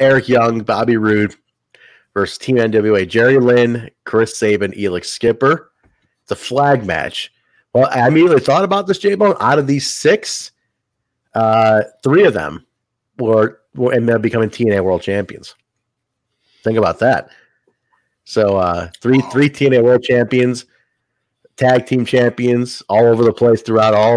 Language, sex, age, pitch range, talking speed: English, male, 30-49, 110-135 Hz, 145 wpm